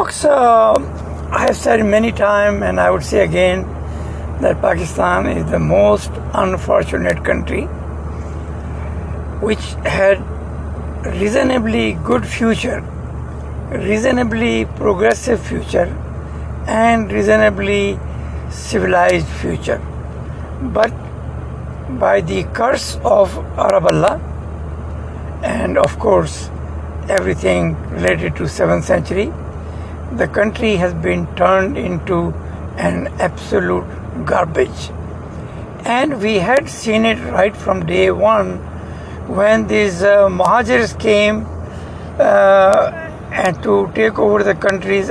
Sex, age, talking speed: male, 60-79, 100 wpm